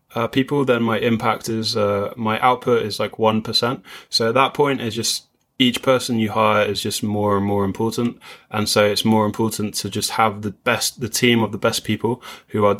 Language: English